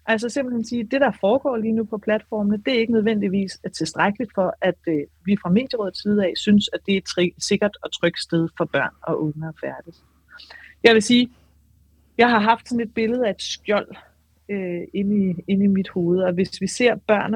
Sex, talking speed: female, 220 wpm